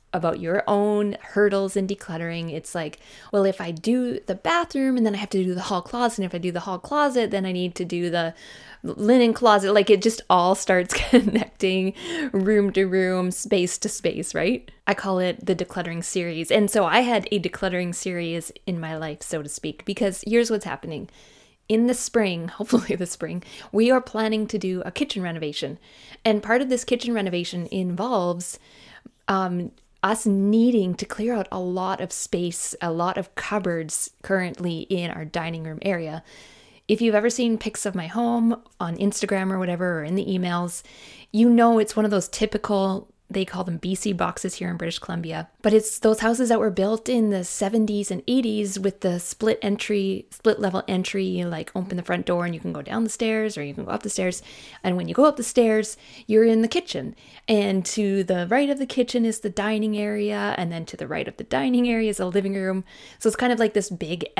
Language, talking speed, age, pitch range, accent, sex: English, 210 wpm, 20-39, 180-220 Hz, American, female